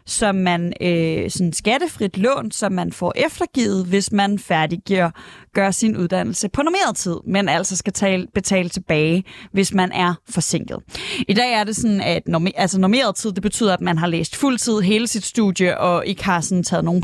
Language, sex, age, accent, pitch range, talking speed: Danish, female, 20-39, native, 180-215 Hz, 195 wpm